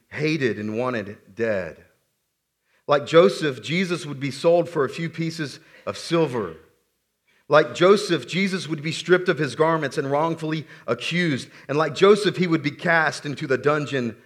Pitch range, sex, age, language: 105-160 Hz, male, 40-59, English